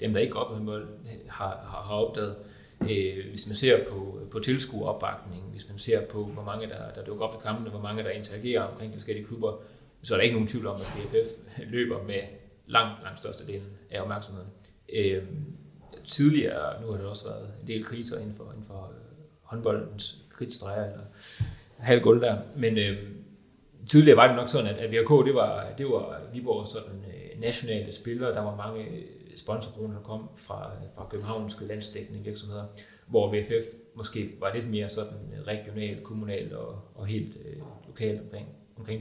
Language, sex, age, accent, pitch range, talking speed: Danish, male, 30-49, native, 100-115 Hz, 170 wpm